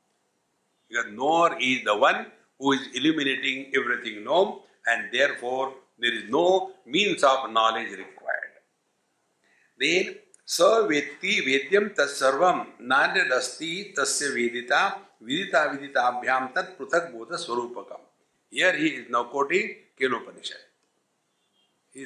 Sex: male